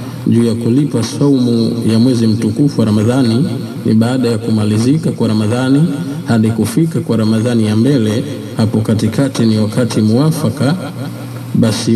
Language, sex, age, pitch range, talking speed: Swahili, male, 50-69, 115-135 Hz, 135 wpm